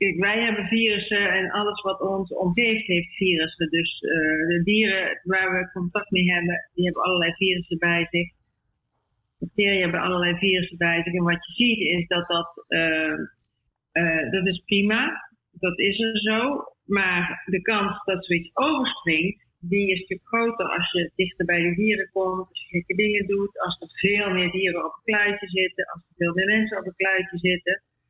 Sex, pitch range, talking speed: female, 175-210 Hz, 190 wpm